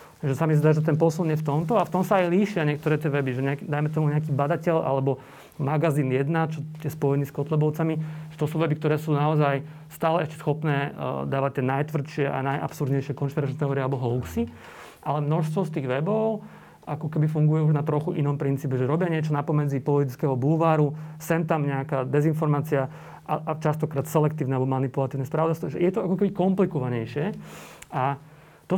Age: 30-49